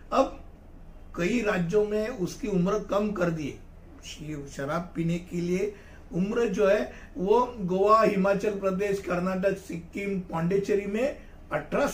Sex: male